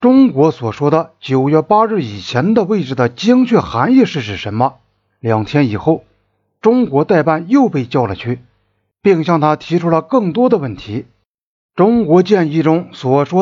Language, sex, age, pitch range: Chinese, male, 50-69, 130-210 Hz